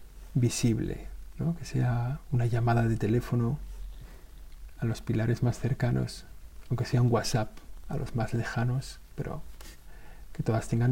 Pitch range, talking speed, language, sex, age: 105-130 Hz, 135 wpm, Spanish, male, 50-69